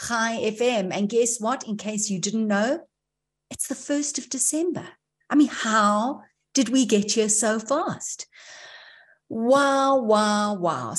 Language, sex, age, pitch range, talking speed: English, female, 50-69, 185-235 Hz, 150 wpm